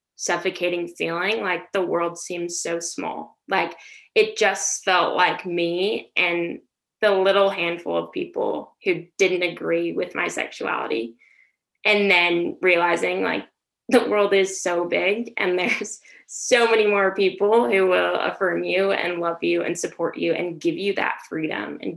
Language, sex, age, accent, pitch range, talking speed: English, female, 10-29, American, 170-200 Hz, 155 wpm